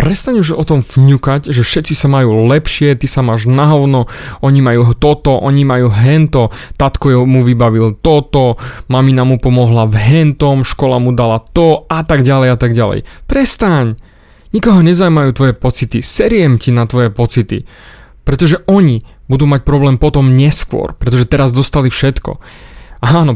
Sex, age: male, 30-49